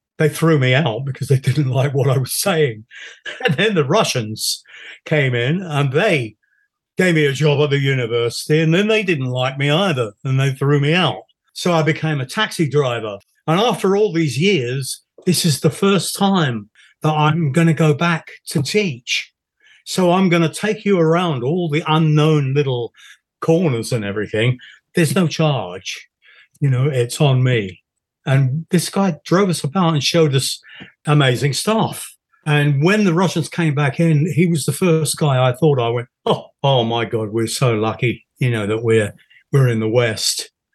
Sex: male